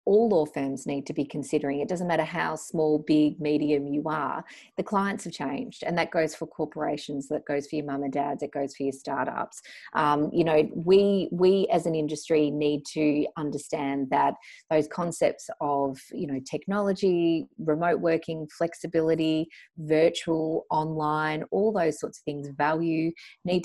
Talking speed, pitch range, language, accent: 170 wpm, 140-165 Hz, English, Australian